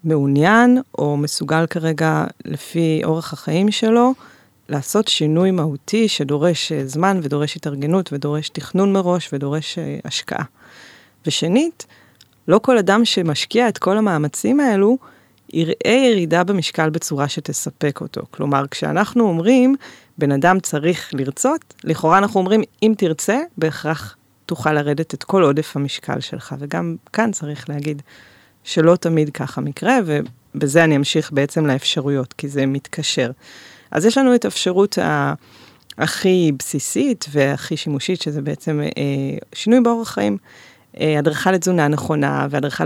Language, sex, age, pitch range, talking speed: English, female, 30-49, 145-185 Hz, 125 wpm